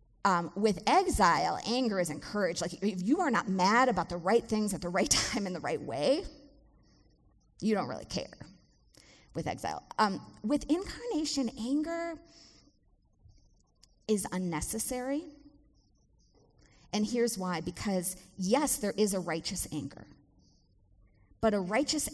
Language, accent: English, American